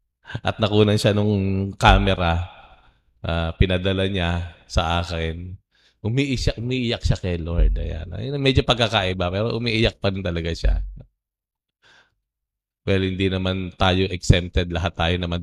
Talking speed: 125 wpm